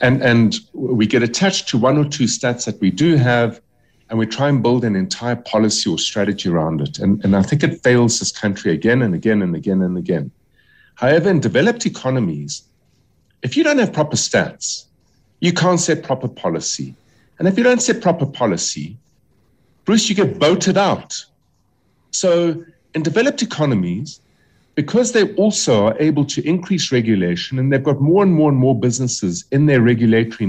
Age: 50-69